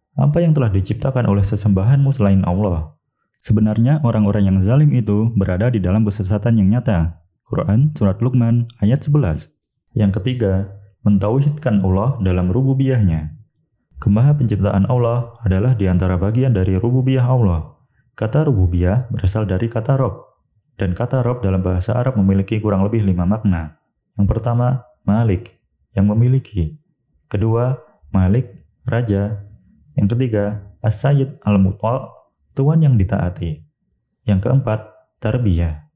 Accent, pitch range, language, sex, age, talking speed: native, 95-125 Hz, Indonesian, male, 20-39, 125 wpm